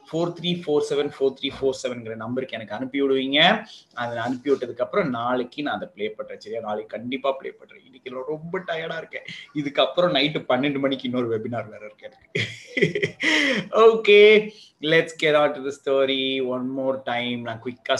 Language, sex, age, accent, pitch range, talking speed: Tamil, male, 20-39, native, 125-165 Hz, 145 wpm